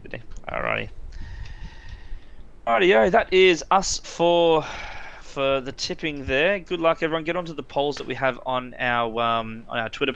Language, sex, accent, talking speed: English, male, Australian, 190 wpm